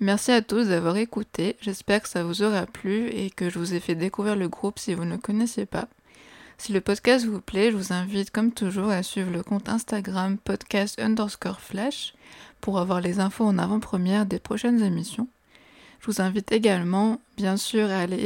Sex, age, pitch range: female, 20-39, 185-215 Hz